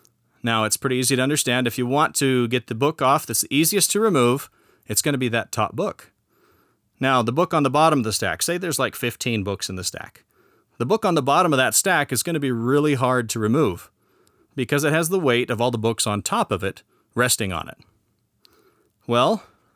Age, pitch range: 30-49, 115-150 Hz